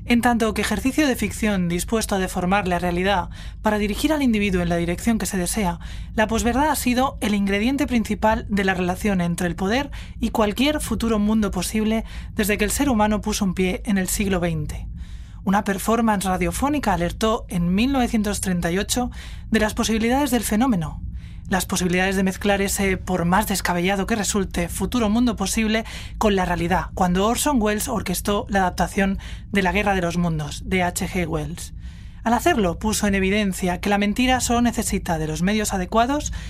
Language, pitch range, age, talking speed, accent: Spanish, 185-230 Hz, 20-39, 175 wpm, Spanish